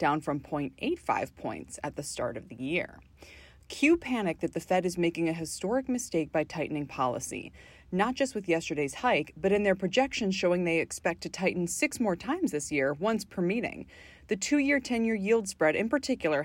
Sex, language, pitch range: female, English, 150-215 Hz